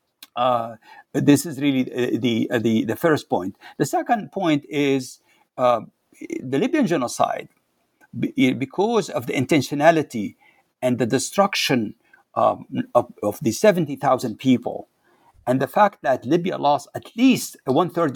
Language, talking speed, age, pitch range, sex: English, 140 wpm, 60-79, 120-170 Hz, male